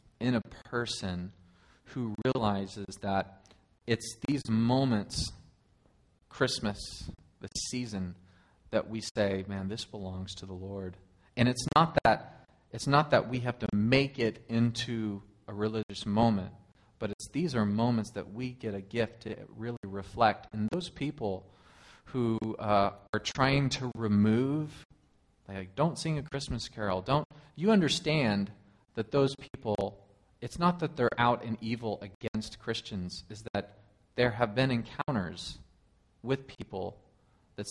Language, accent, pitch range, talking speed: English, American, 100-125 Hz, 150 wpm